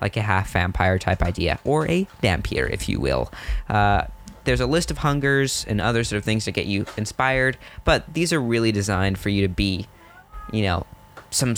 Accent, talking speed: American, 195 wpm